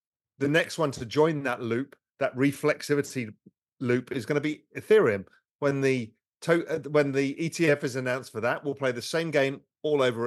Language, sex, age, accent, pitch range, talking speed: English, male, 40-59, British, 120-155 Hz, 180 wpm